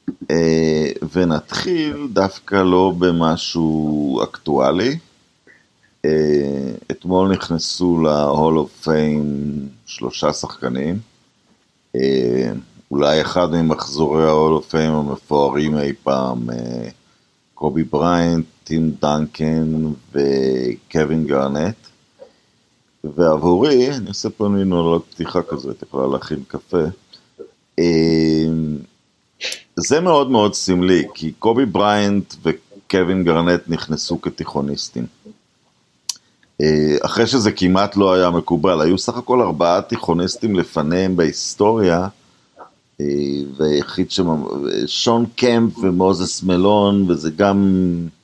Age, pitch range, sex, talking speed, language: 50-69, 75-95 Hz, male, 90 wpm, Hebrew